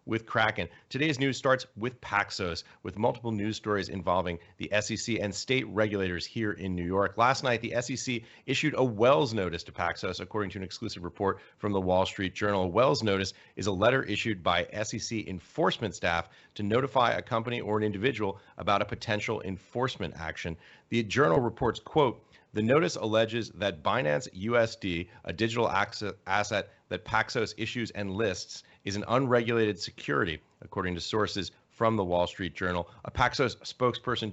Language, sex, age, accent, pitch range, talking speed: English, male, 30-49, American, 95-115 Hz, 170 wpm